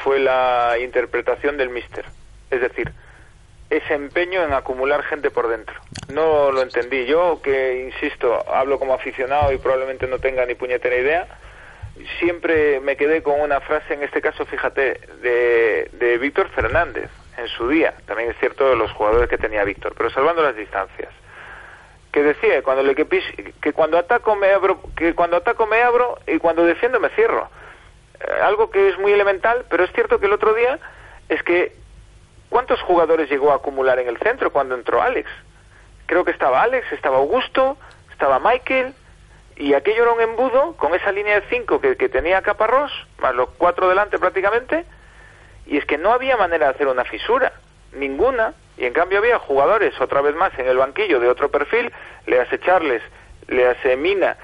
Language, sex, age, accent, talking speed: Spanish, male, 40-59, Spanish, 180 wpm